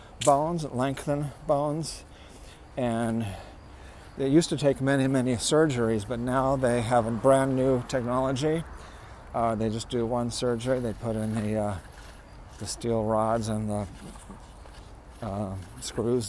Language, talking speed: English, 135 wpm